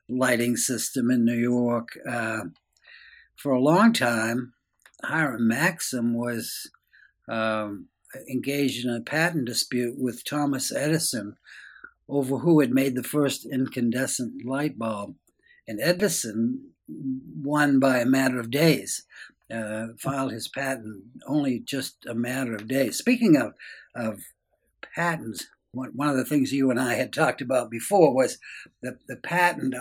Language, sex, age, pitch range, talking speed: English, male, 60-79, 120-155 Hz, 135 wpm